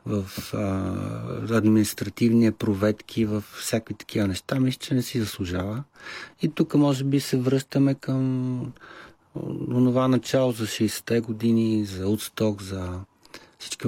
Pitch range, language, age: 100-120 Hz, Bulgarian, 40-59